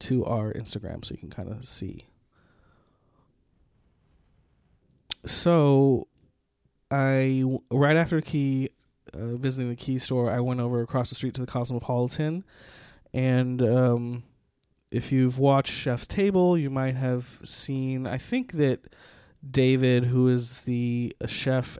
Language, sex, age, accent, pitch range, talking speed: English, male, 20-39, American, 125-140 Hz, 130 wpm